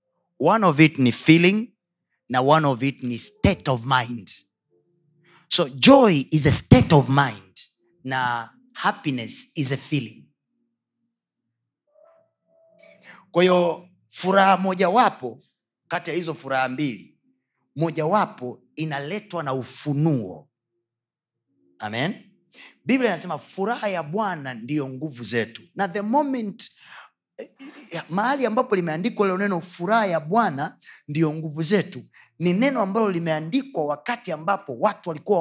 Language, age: Swahili, 30-49